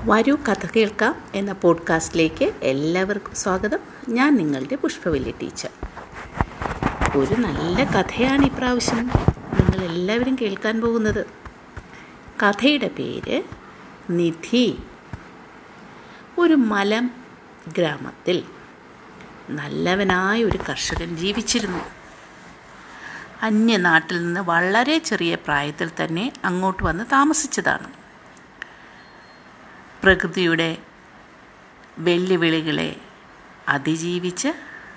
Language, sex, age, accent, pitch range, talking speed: Malayalam, female, 60-79, native, 175-245 Hz, 70 wpm